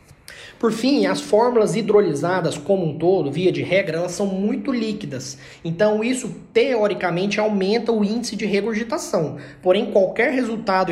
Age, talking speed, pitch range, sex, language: 20-39, 145 wpm, 170-215 Hz, male, Portuguese